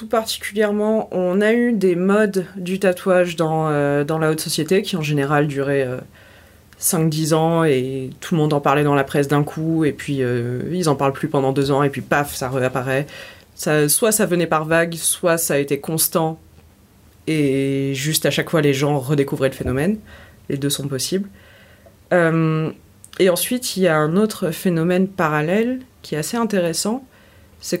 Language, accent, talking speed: French, French, 190 wpm